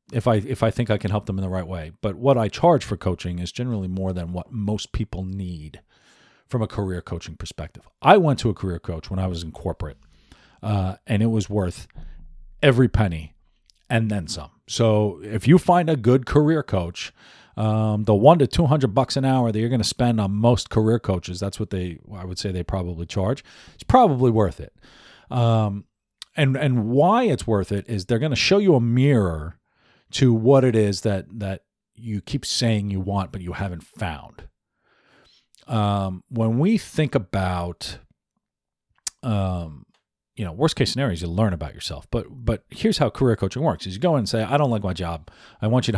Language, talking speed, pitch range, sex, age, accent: English, 205 wpm, 90-125 Hz, male, 40-59, American